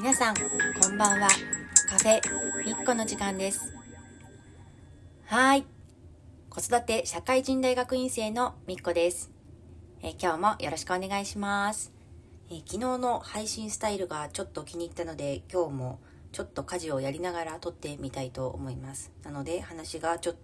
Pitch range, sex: 135-185 Hz, female